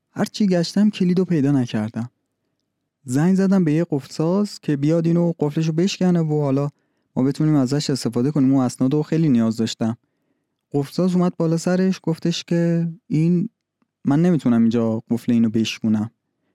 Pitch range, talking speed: 125-175 Hz, 150 wpm